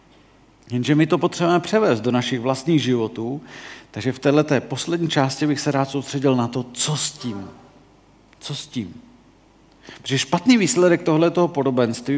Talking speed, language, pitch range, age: 155 wpm, Czech, 125-155 Hz, 50-69